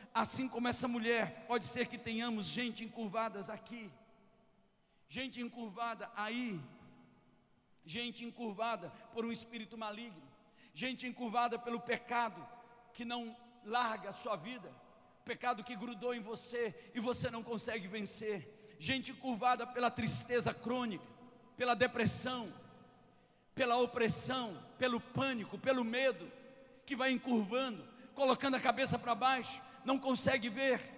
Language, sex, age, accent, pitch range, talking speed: Portuguese, male, 50-69, Brazilian, 230-260 Hz, 125 wpm